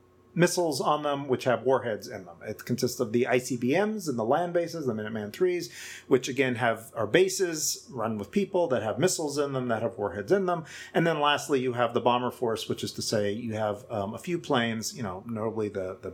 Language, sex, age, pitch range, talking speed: English, male, 40-59, 110-145 Hz, 225 wpm